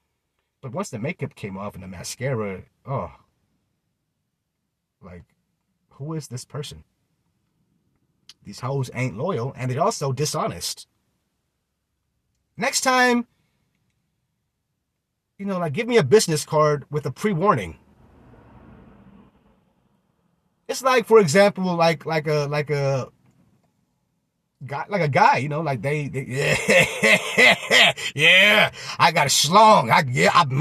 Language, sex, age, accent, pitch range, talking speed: English, male, 30-49, American, 140-205 Hz, 125 wpm